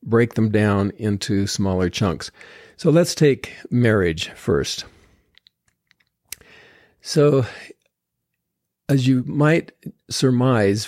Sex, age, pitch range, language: male, 50-69, 105-125 Hz, English